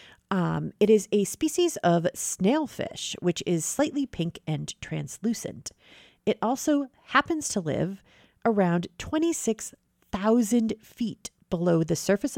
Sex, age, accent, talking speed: female, 40-59, American, 115 wpm